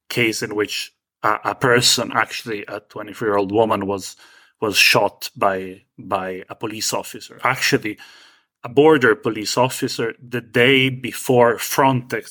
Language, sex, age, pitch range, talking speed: English, male, 30-49, 105-130 Hz, 125 wpm